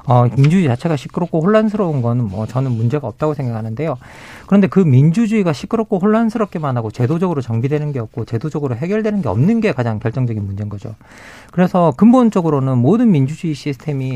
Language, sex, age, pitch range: Korean, male, 40-59, 125-190 Hz